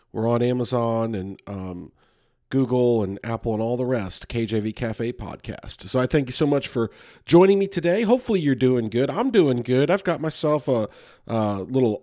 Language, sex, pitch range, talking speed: English, male, 115-145 Hz, 190 wpm